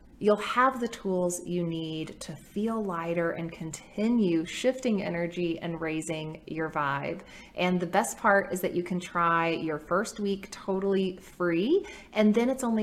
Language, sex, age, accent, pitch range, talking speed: English, female, 30-49, American, 165-210 Hz, 165 wpm